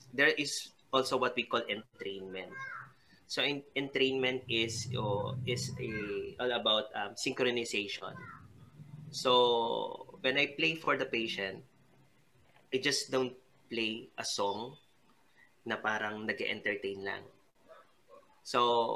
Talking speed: 110 wpm